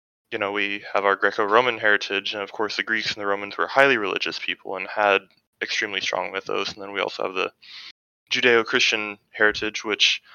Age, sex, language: 20-39, male, English